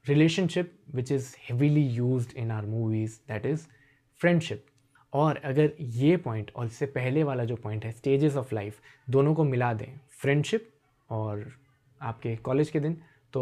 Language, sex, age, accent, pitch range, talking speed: Hindi, male, 20-39, native, 120-150 Hz, 160 wpm